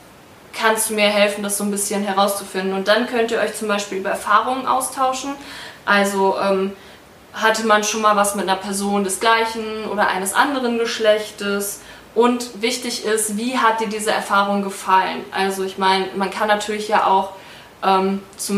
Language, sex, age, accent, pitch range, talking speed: German, female, 20-39, German, 195-225 Hz, 170 wpm